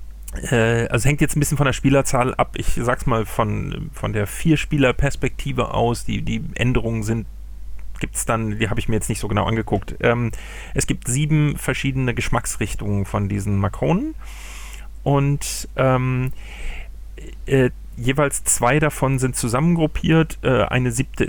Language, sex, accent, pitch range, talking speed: German, male, German, 115-155 Hz, 150 wpm